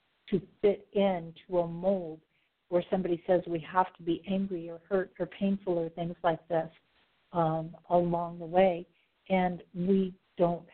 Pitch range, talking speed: 165-190 Hz, 155 wpm